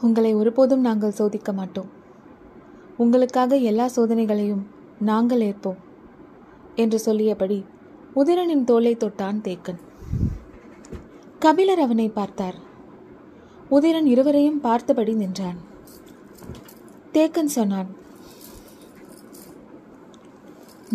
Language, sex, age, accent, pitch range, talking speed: Tamil, female, 20-39, native, 205-265 Hz, 70 wpm